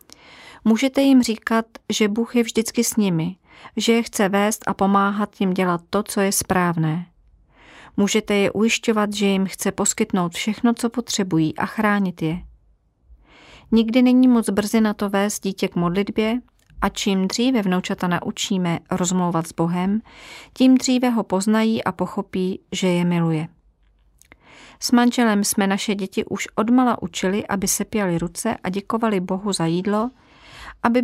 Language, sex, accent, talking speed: Czech, female, native, 150 wpm